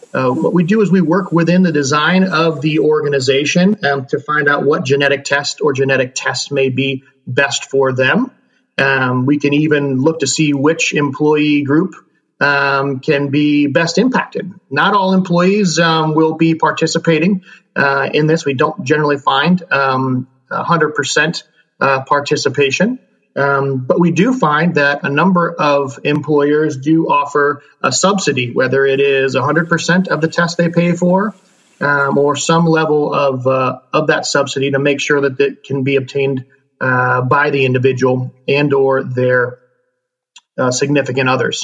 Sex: male